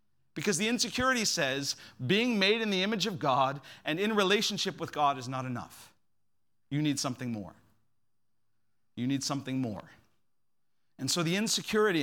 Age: 40-59